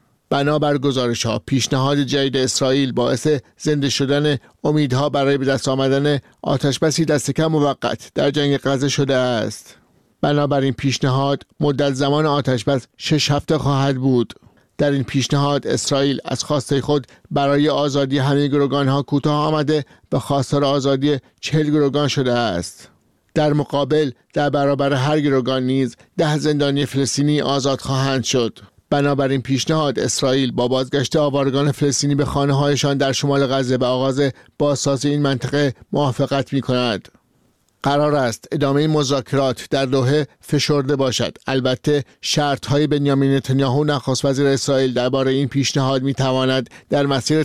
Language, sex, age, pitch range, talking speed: Persian, male, 50-69, 135-145 Hz, 135 wpm